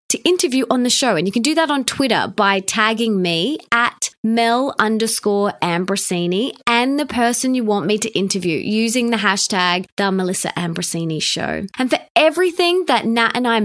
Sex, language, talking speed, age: female, English, 180 wpm, 20-39